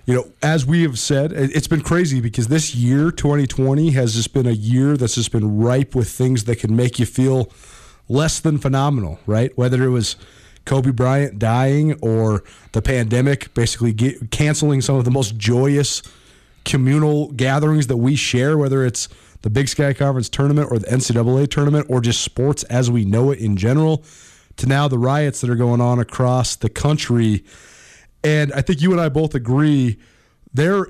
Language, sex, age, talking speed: English, male, 30-49, 185 wpm